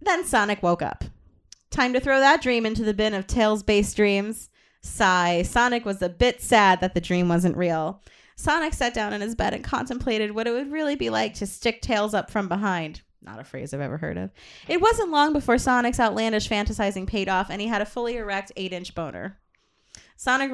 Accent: American